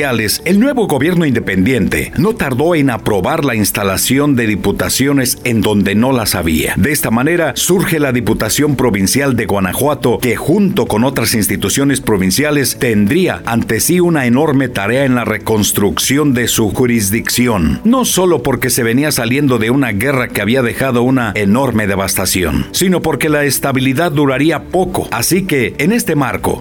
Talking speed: 160 wpm